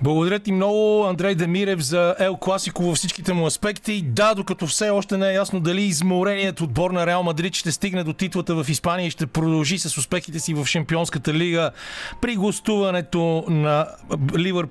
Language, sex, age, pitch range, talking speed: Bulgarian, male, 40-59, 155-195 Hz, 180 wpm